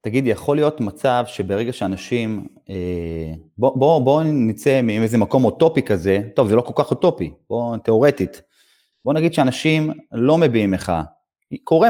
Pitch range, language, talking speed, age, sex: 110-160 Hz, Hebrew, 150 wpm, 30-49, male